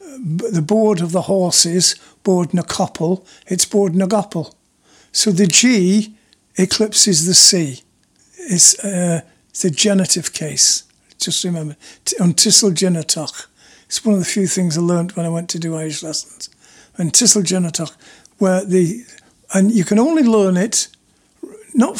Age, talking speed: 60-79, 145 wpm